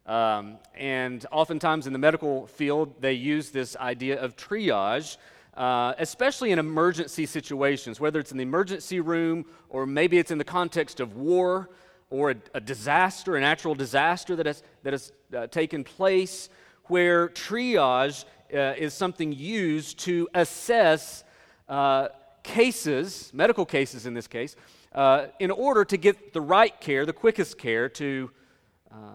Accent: American